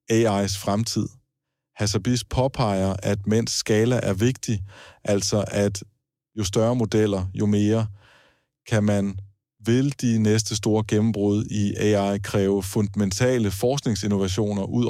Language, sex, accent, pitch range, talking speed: Danish, male, native, 100-120 Hz, 115 wpm